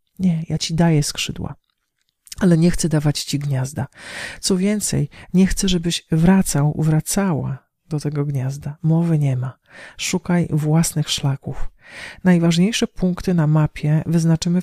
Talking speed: 130 wpm